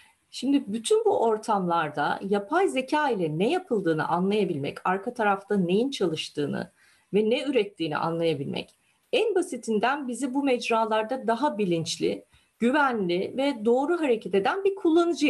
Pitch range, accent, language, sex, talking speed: 195-290 Hz, native, Turkish, female, 125 wpm